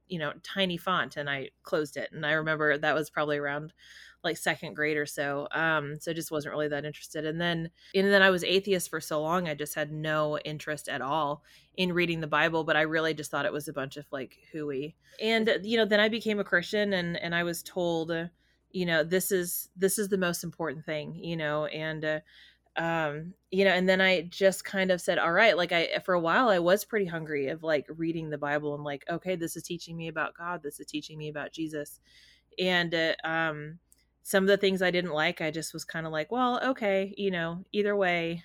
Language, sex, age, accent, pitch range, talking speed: English, female, 20-39, American, 150-180 Hz, 235 wpm